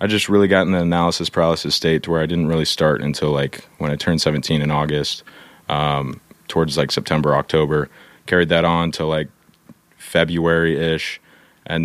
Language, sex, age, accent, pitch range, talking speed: English, male, 30-49, American, 80-95 Hz, 175 wpm